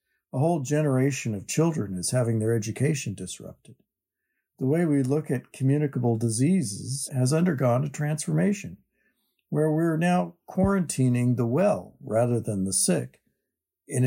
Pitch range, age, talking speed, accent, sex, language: 115-150 Hz, 50-69, 135 wpm, American, male, English